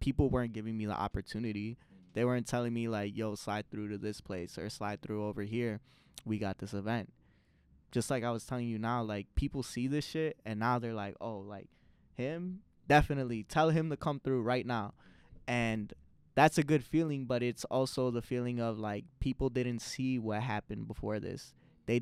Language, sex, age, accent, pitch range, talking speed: English, male, 20-39, American, 110-130 Hz, 200 wpm